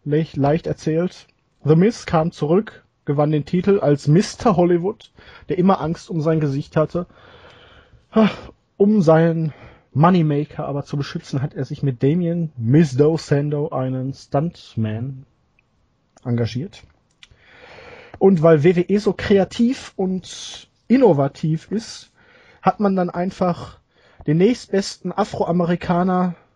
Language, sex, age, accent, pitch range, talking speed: German, male, 30-49, German, 130-175 Hz, 115 wpm